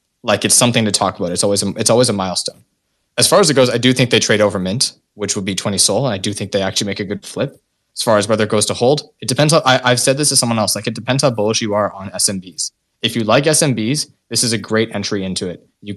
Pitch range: 105-125 Hz